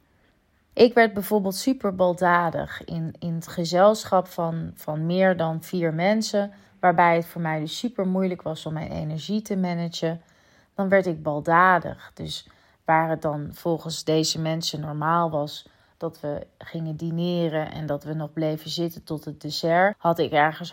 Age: 30-49